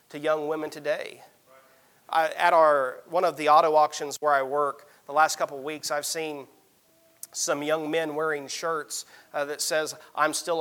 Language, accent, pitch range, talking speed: English, American, 145-175 Hz, 180 wpm